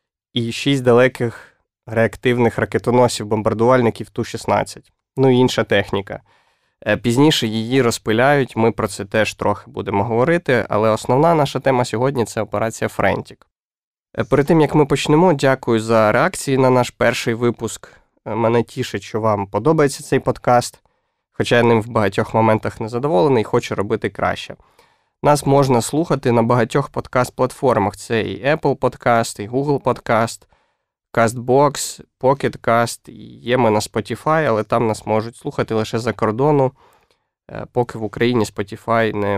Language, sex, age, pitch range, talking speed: Ukrainian, male, 20-39, 110-130 Hz, 140 wpm